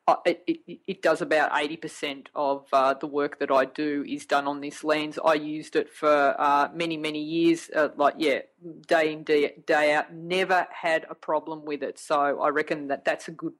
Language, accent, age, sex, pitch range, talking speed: English, Australian, 30-49, female, 150-205 Hz, 205 wpm